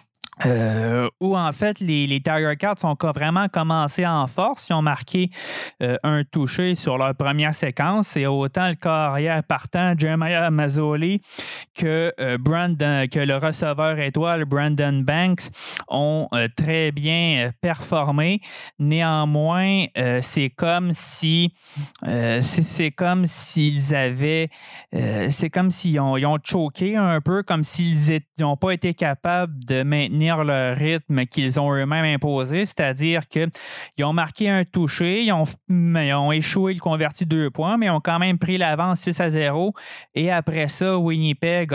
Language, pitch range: French, 145-175 Hz